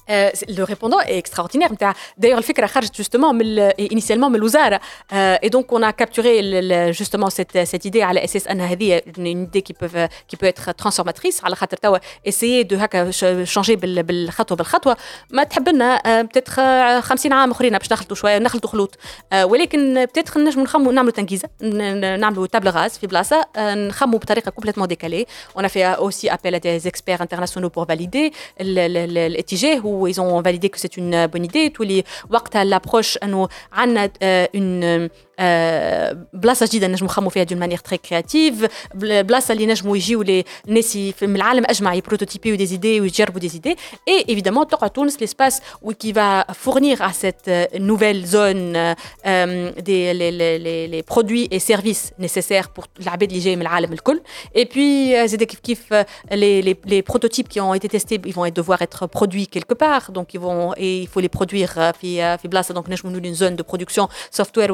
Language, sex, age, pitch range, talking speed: Arabic, female, 20-39, 180-225 Hz, 155 wpm